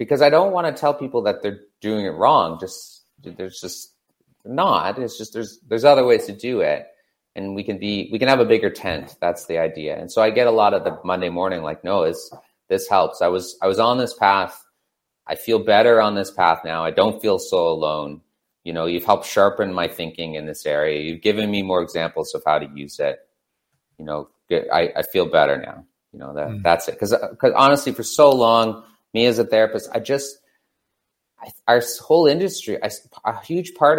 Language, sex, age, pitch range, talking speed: English, male, 30-49, 95-135 Hz, 220 wpm